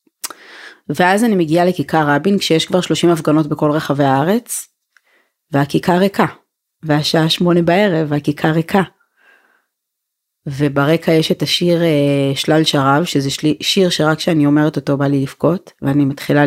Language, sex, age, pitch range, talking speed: Hebrew, female, 30-49, 145-170 Hz, 130 wpm